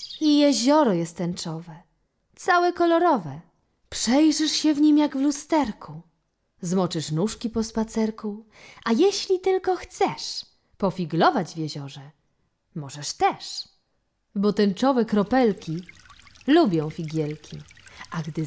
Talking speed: 105 wpm